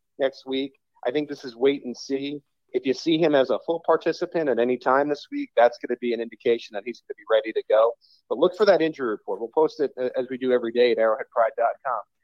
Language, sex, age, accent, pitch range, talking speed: English, male, 30-49, American, 115-140 Hz, 255 wpm